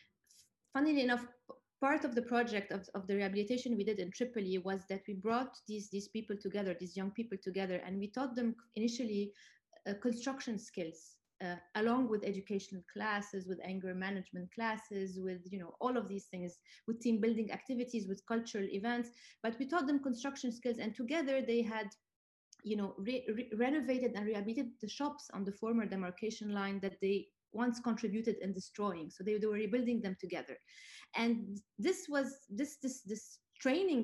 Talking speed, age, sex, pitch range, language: 170 wpm, 20-39, female, 195-245 Hz, English